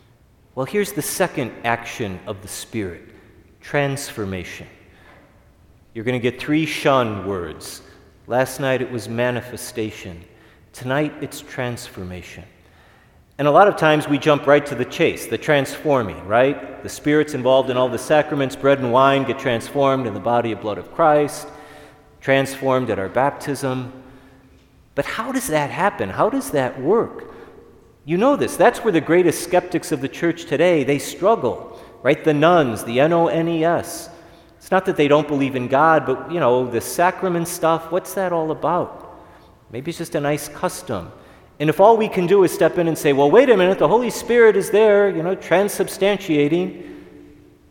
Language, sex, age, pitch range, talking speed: English, male, 40-59, 125-170 Hz, 170 wpm